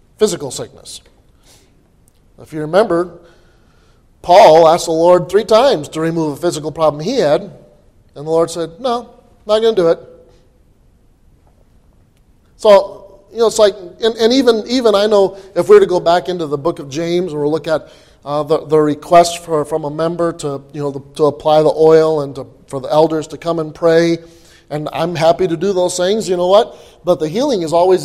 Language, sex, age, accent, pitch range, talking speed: English, male, 30-49, American, 155-200 Hz, 200 wpm